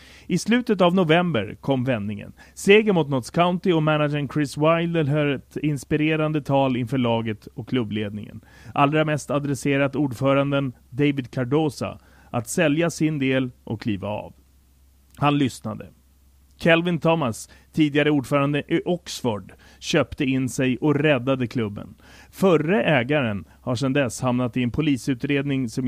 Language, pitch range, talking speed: English, 115-155 Hz, 135 wpm